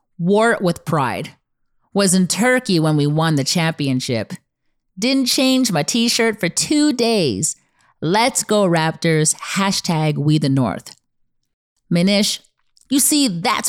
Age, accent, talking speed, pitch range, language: 30-49, American, 130 wpm, 145-205 Hz, English